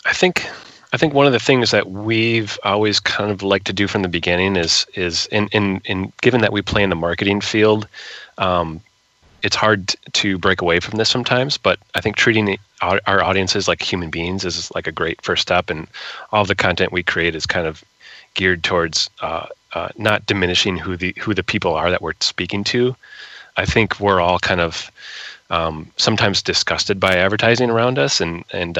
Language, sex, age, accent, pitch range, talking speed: English, male, 30-49, American, 85-105 Hz, 205 wpm